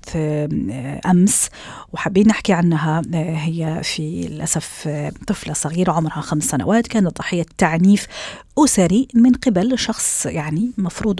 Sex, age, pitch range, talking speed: female, 40-59, 160-220 Hz, 115 wpm